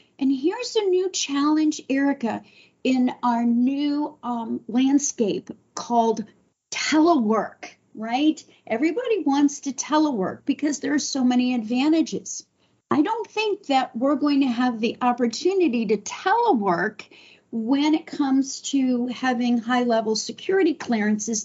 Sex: female